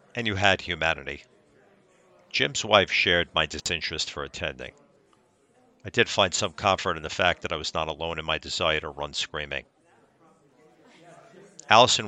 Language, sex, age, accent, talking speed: English, male, 50-69, American, 155 wpm